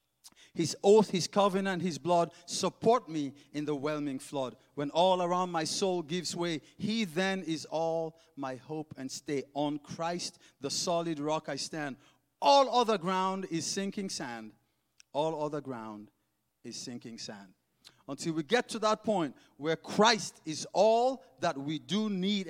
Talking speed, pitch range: 160 wpm, 130-185 Hz